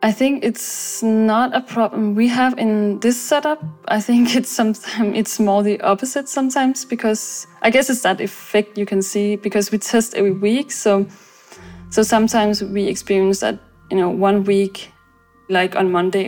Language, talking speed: English, 175 wpm